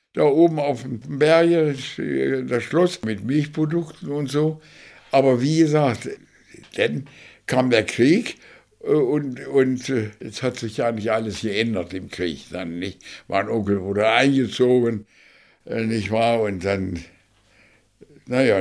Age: 60-79